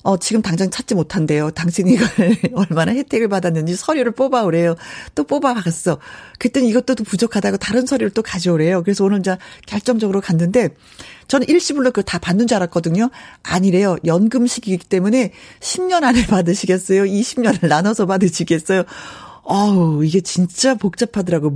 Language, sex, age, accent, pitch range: Korean, female, 40-59, native, 170-230 Hz